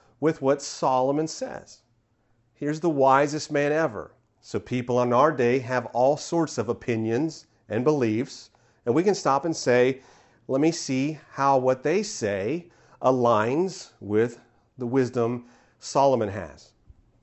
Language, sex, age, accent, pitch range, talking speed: English, male, 40-59, American, 120-140 Hz, 140 wpm